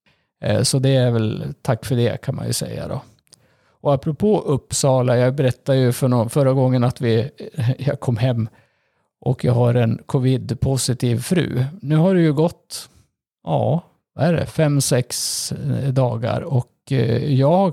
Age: 50-69